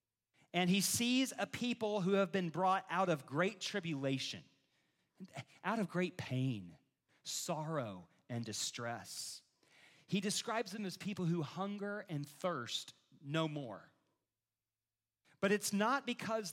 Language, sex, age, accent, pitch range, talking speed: English, male, 40-59, American, 120-185 Hz, 125 wpm